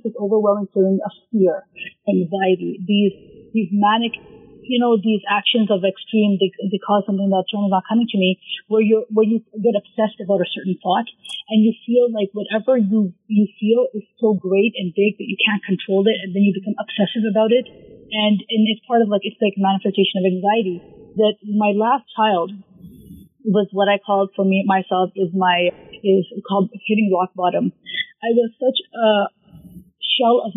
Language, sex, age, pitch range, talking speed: English, female, 30-49, 195-220 Hz, 185 wpm